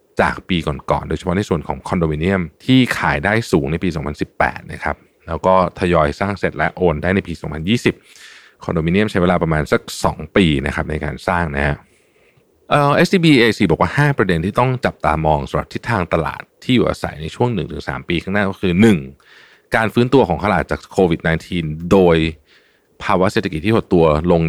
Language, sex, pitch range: Thai, male, 75-100 Hz